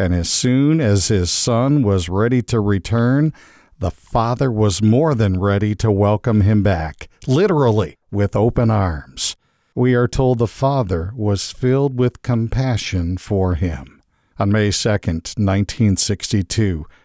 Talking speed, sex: 135 wpm, male